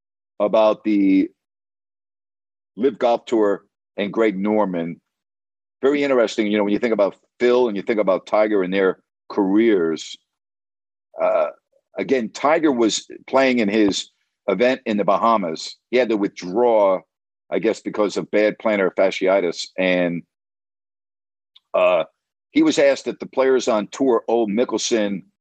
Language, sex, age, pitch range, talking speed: English, male, 50-69, 100-125 Hz, 140 wpm